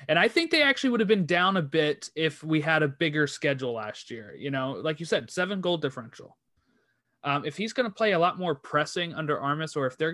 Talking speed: 250 wpm